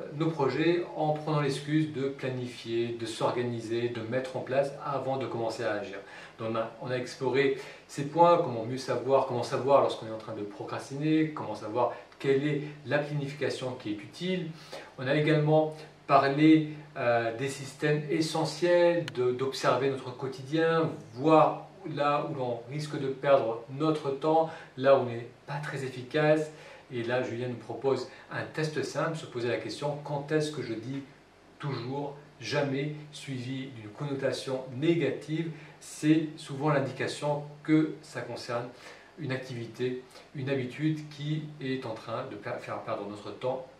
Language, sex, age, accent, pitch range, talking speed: French, male, 40-59, French, 125-155 Hz, 160 wpm